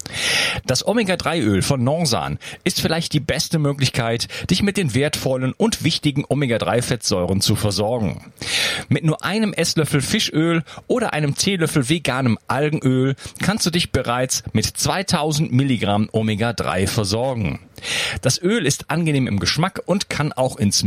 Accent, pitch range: German, 115-160 Hz